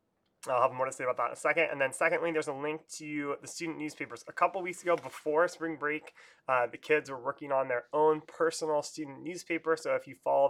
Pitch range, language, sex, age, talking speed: 130-160 Hz, English, male, 20-39, 240 wpm